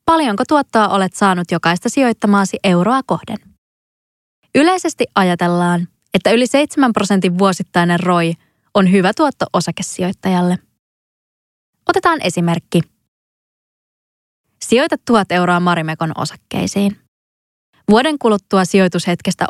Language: Finnish